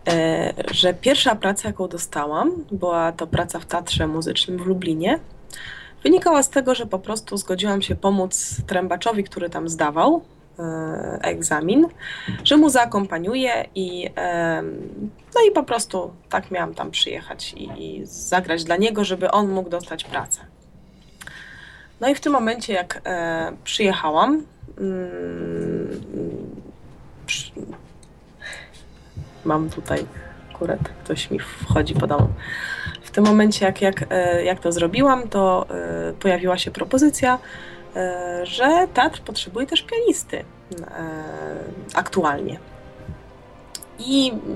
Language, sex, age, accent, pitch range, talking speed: Polish, female, 20-39, native, 165-225 Hz, 120 wpm